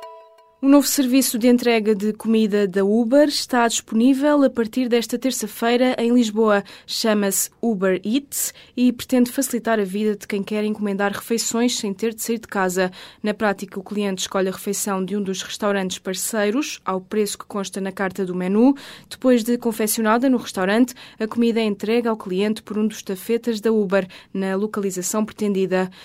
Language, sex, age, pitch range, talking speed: Portuguese, female, 20-39, 195-235 Hz, 175 wpm